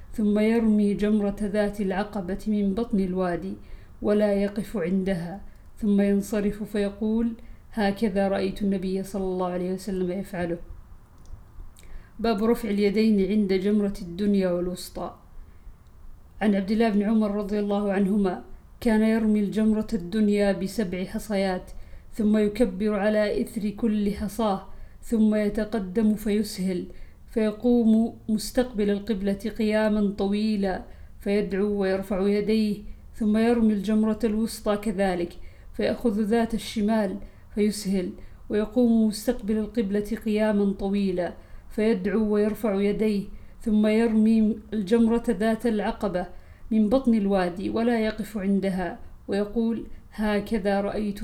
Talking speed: 105 wpm